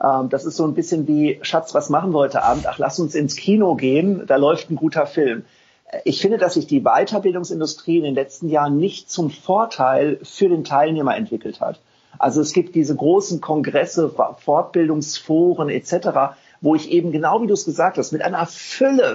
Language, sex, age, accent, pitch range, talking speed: German, male, 50-69, German, 150-190 Hz, 190 wpm